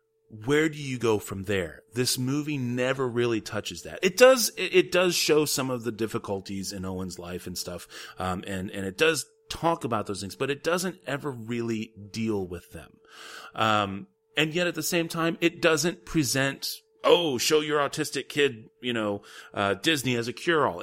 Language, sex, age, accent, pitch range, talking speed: English, male, 30-49, American, 110-170 Hz, 185 wpm